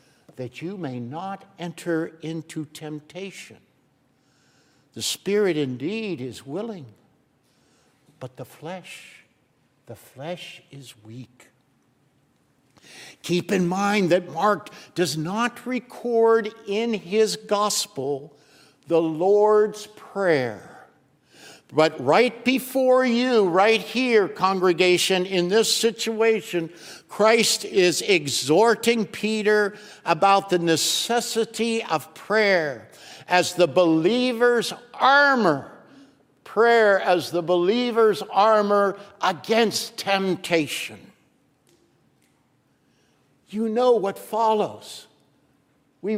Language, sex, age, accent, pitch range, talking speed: English, male, 60-79, American, 170-225 Hz, 90 wpm